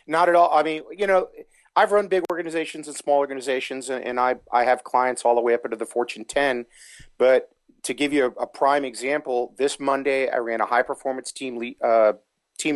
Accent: American